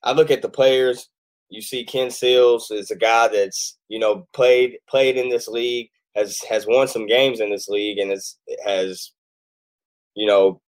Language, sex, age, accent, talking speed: English, male, 10-29, American, 185 wpm